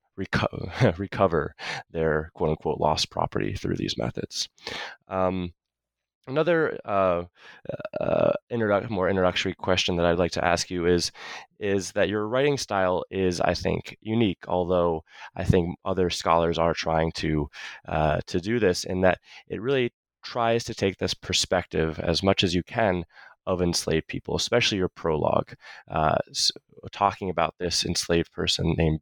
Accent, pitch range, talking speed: American, 80-95 Hz, 145 wpm